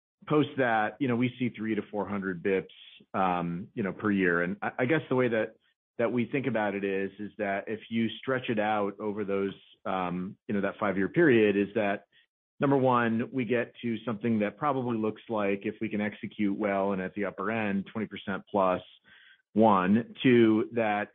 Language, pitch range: English, 100-115 Hz